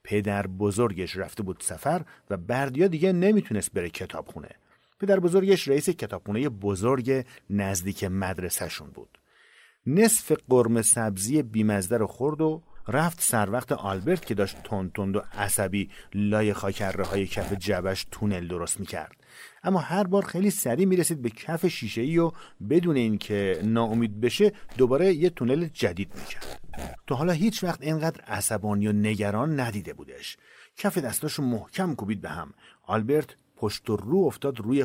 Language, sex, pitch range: Persian, male, 100-155 Hz